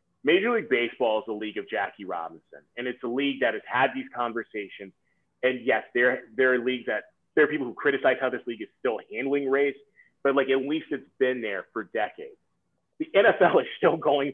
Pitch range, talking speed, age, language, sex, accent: 120-165 Hz, 215 wpm, 30-49, English, male, American